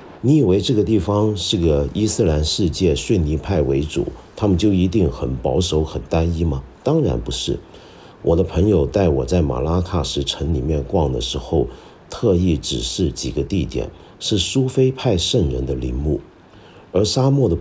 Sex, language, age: male, Chinese, 50-69